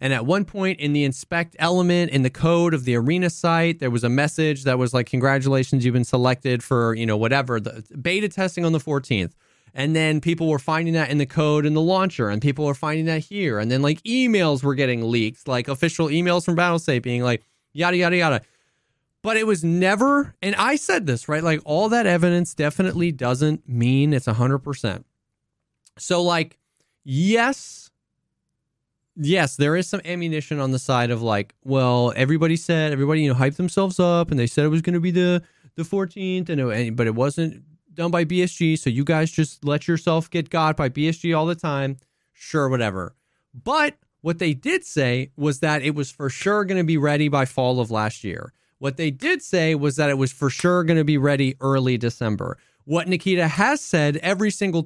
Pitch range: 130-170 Hz